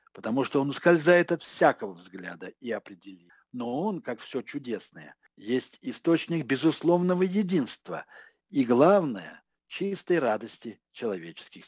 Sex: male